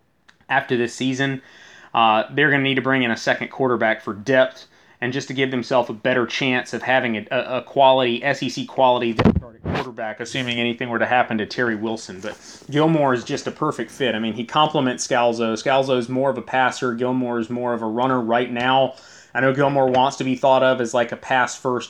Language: English